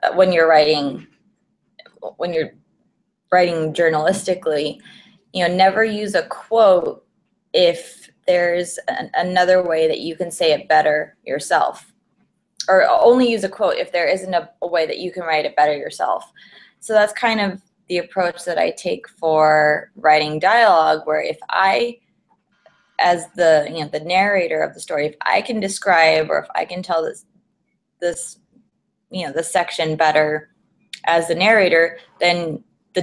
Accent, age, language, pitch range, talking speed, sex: American, 20-39, English, 160-200 Hz, 160 wpm, female